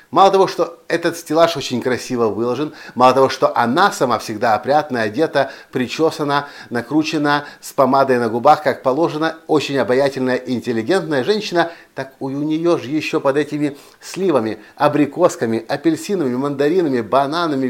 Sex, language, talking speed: male, Russian, 140 wpm